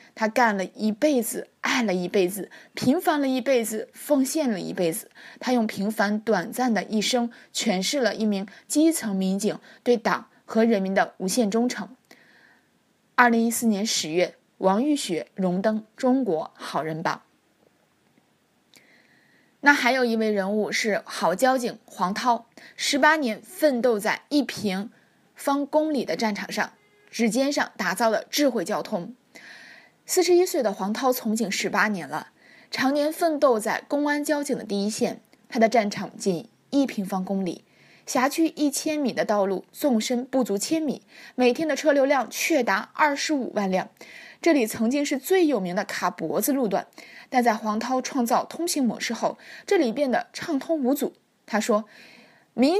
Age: 20-39